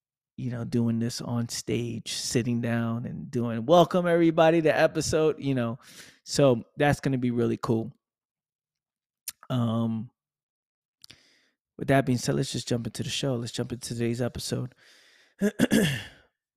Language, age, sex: English, 20-39, male